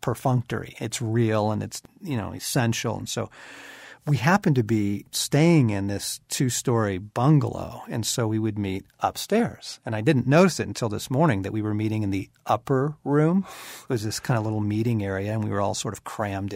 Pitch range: 105-130 Hz